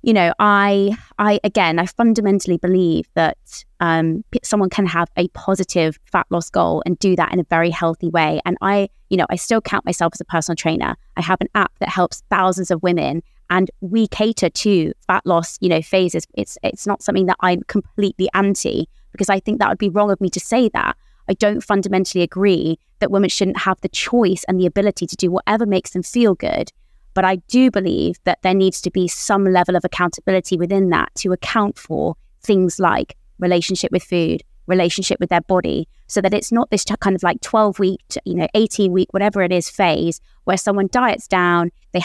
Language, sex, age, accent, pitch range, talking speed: English, female, 20-39, British, 175-205 Hz, 205 wpm